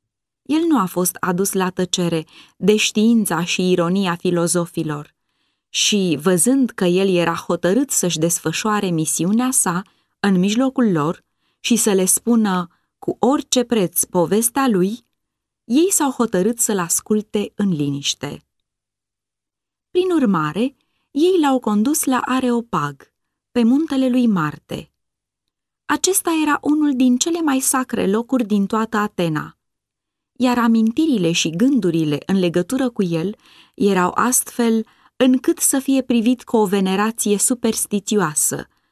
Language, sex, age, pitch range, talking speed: Romanian, female, 20-39, 175-250 Hz, 125 wpm